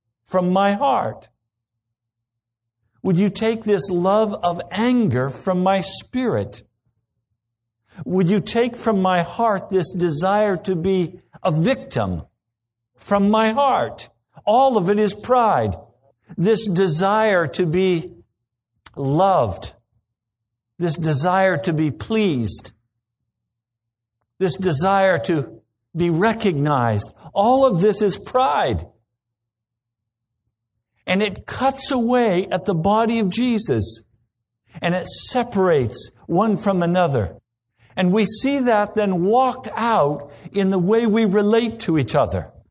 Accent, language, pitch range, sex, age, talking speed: American, English, 115-190 Hz, male, 60-79, 115 wpm